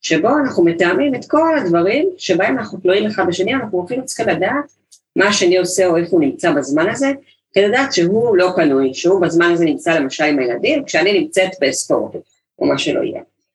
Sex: female